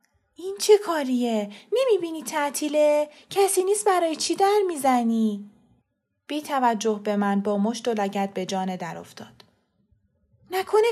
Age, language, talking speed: 20-39, Persian, 135 wpm